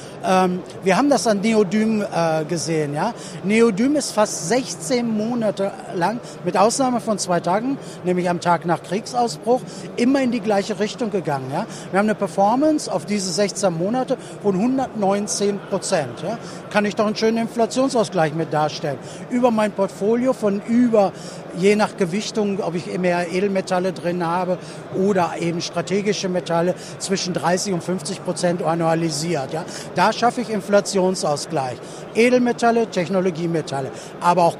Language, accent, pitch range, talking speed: German, German, 180-220 Hz, 140 wpm